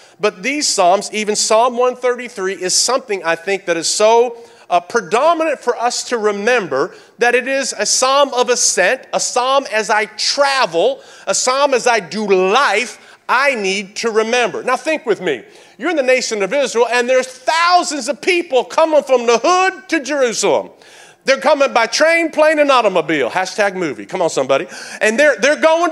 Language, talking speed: English, 180 wpm